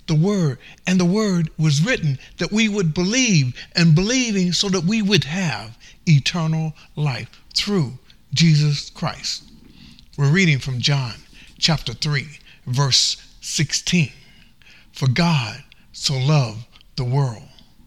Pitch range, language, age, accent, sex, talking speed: 145-195 Hz, English, 60-79, American, male, 125 wpm